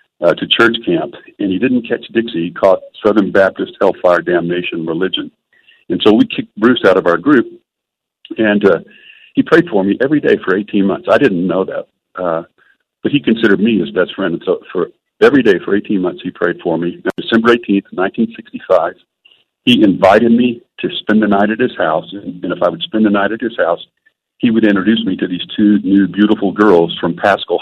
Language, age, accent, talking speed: English, 50-69, American, 205 wpm